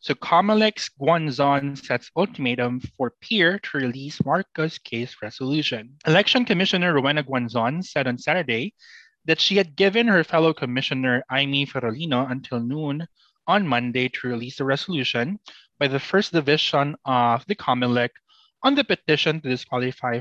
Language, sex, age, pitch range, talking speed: Filipino, male, 20-39, 125-180 Hz, 145 wpm